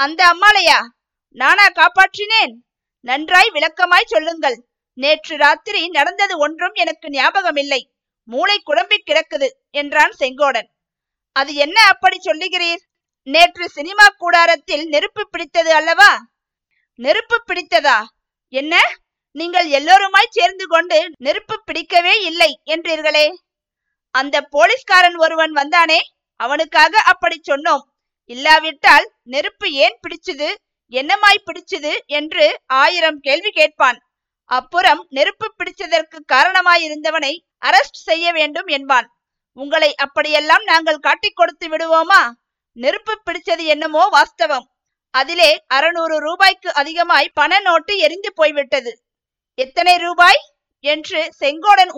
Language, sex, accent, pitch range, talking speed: Tamil, female, native, 295-360 Hz, 100 wpm